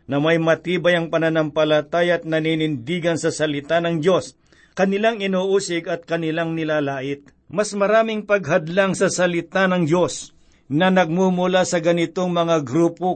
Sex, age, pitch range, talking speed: male, 50-69, 160-185 Hz, 130 wpm